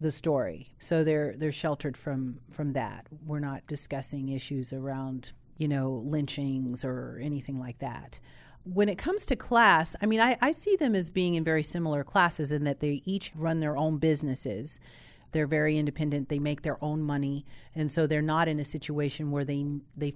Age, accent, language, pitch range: 40-59, American, English, 140-165 Hz